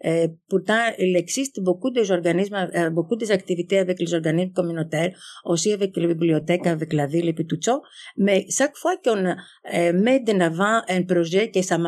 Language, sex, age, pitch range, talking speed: French, female, 50-69, 170-225 Hz, 180 wpm